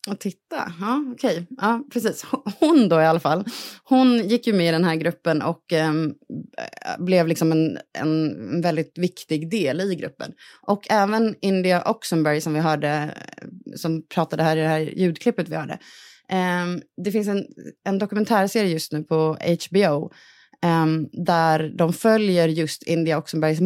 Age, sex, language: 20-39, female, Swedish